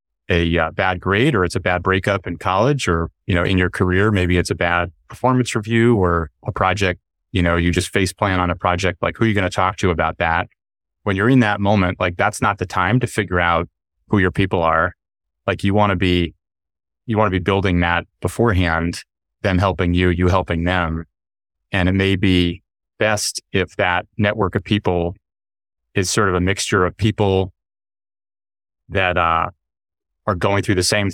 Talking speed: 200 wpm